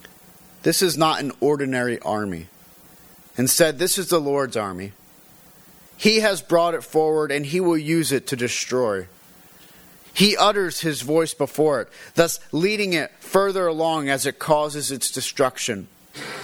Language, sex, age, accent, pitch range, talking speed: English, male, 40-59, American, 135-175 Hz, 145 wpm